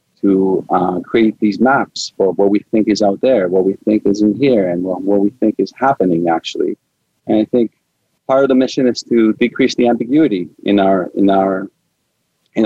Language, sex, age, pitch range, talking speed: English, male, 30-49, 100-120 Hz, 205 wpm